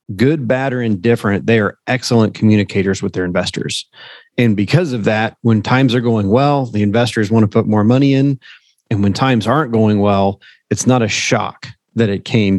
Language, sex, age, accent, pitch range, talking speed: English, male, 30-49, American, 100-115 Hz, 195 wpm